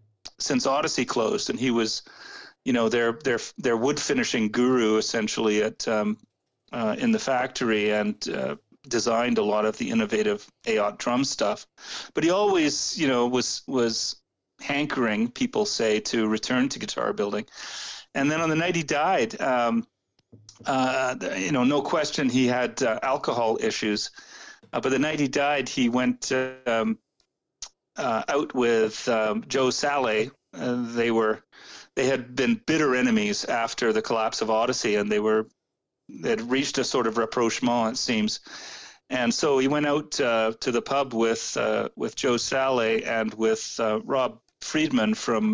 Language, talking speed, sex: English, 165 wpm, male